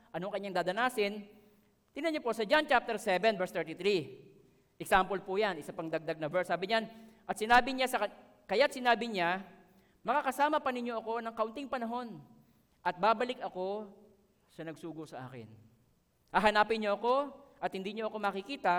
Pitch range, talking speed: 165-235 Hz, 165 wpm